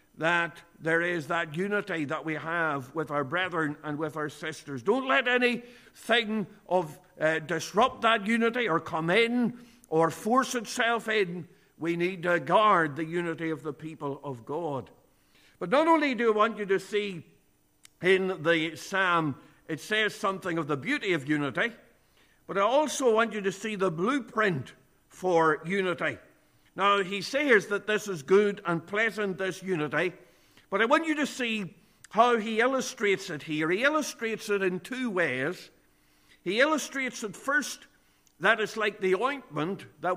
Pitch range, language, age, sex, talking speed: 165-225 Hz, English, 60-79, male, 165 wpm